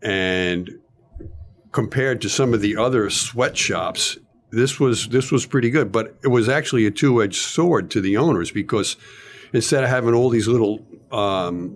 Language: English